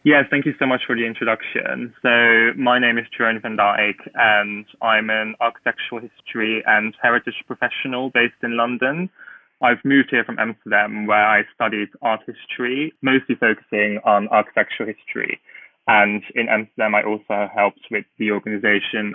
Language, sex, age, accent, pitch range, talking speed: English, male, 10-29, British, 110-125 Hz, 155 wpm